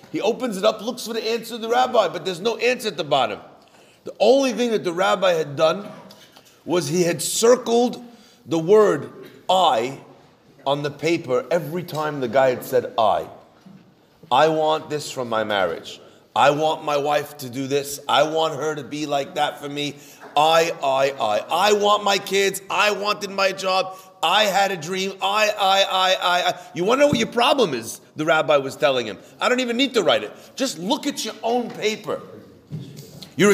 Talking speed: 200 wpm